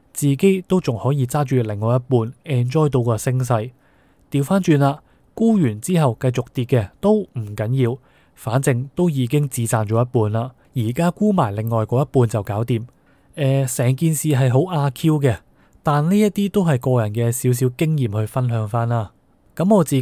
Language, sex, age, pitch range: Chinese, male, 20-39, 115-150 Hz